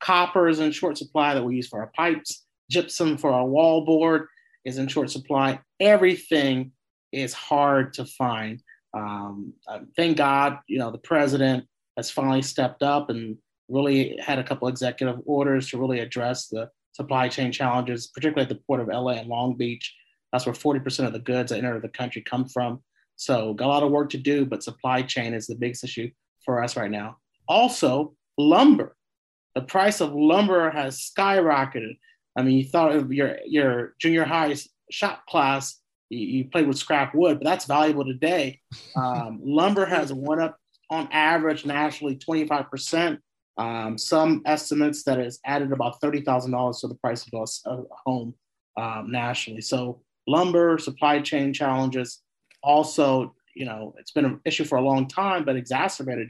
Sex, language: male, English